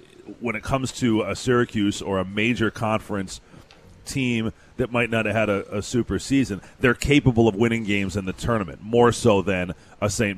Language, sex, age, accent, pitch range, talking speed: English, male, 30-49, American, 90-110 Hz, 190 wpm